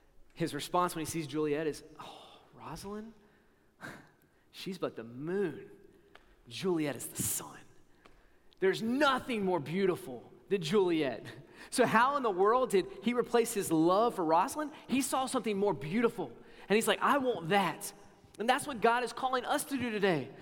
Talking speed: 165 wpm